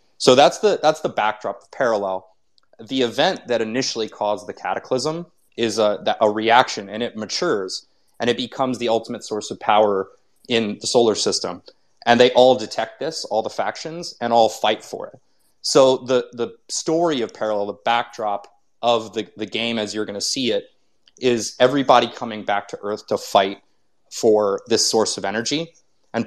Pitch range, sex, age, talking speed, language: 105-130 Hz, male, 30-49, 180 wpm, English